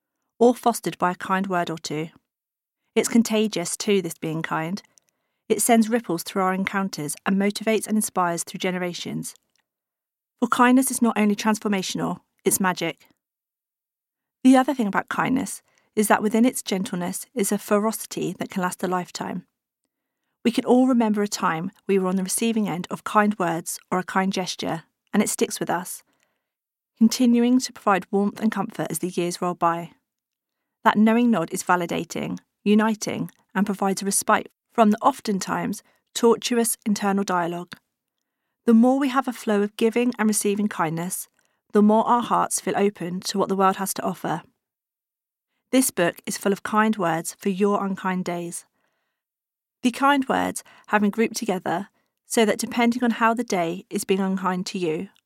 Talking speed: 170 wpm